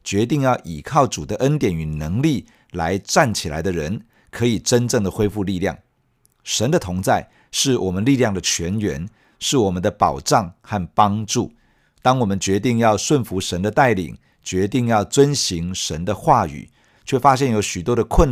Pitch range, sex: 95-125 Hz, male